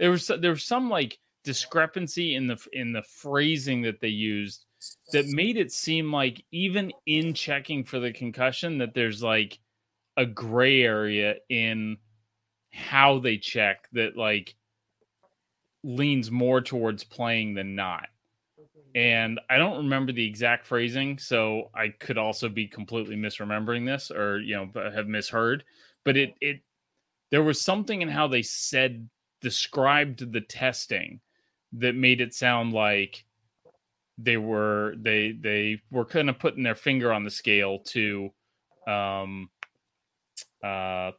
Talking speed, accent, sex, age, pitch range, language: 145 wpm, American, male, 30-49, 110-140 Hz, English